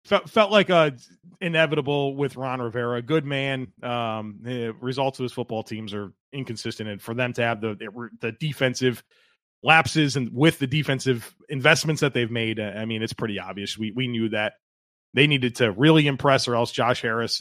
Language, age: English, 30-49